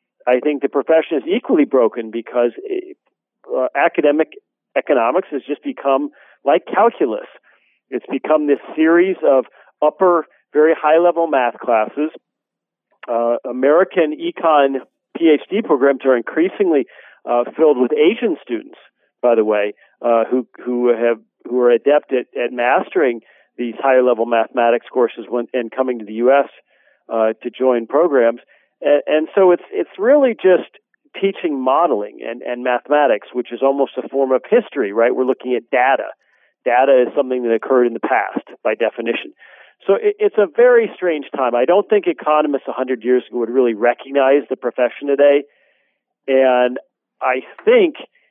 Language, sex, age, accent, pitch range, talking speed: English, male, 40-59, American, 125-190 Hz, 150 wpm